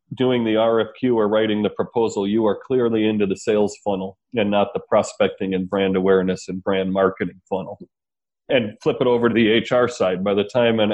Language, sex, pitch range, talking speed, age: English, male, 100-120 Hz, 205 wpm, 40-59